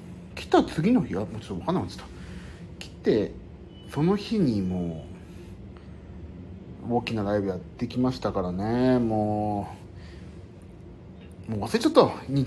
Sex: male